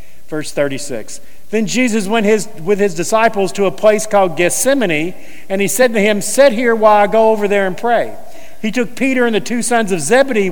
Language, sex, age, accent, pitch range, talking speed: English, male, 50-69, American, 200-245 Hz, 215 wpm